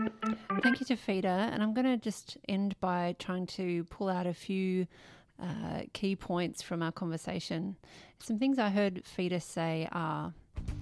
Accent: Australian